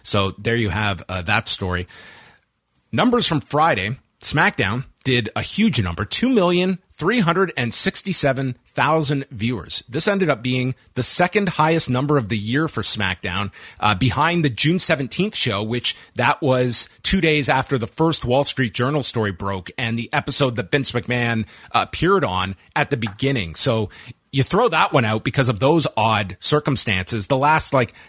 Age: 30-49